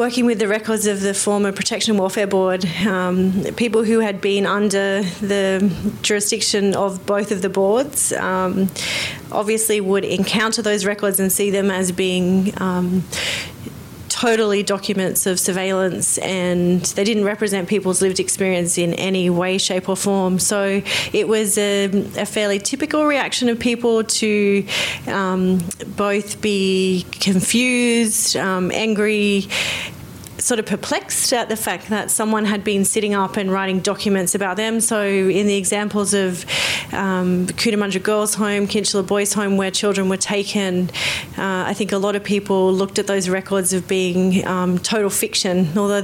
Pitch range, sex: 190-210 Hz, female